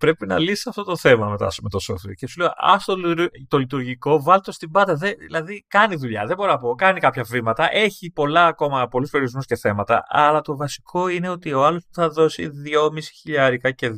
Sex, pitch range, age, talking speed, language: male, 115-175 Hz, 30-49, 215 wpm, Greek